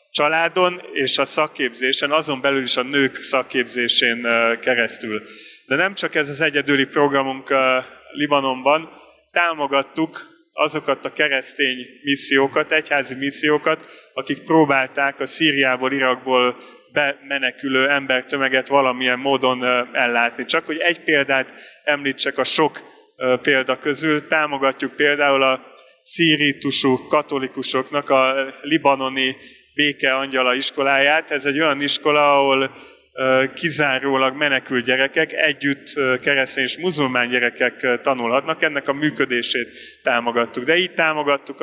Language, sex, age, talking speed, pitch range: Hungarian, male, 30-49, 110 wpm, 130-145 Hz